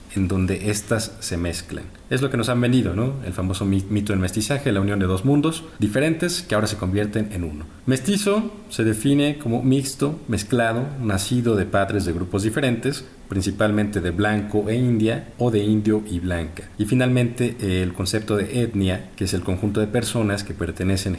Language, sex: Spanish, male